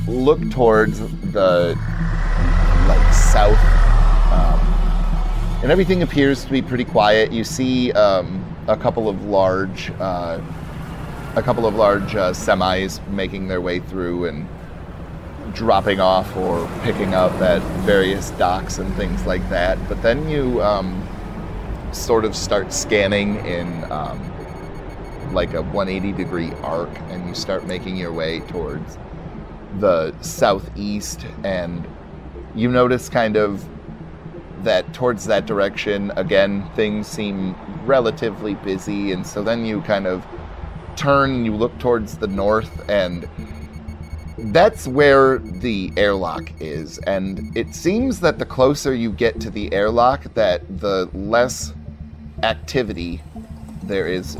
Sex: male